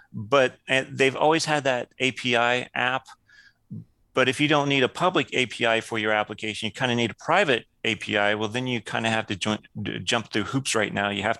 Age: 30-49